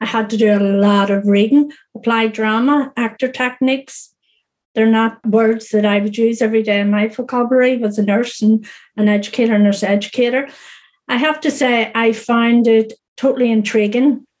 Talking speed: 170 wpm